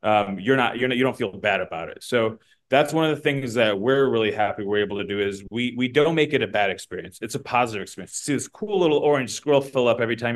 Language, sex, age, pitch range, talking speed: English, male, 30-49, 110-135 Hz, 280 wpm